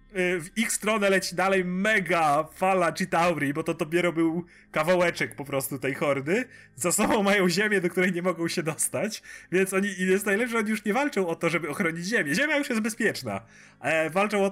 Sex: male